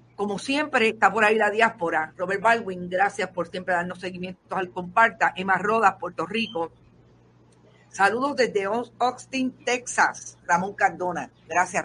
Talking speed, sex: 135 wpm, female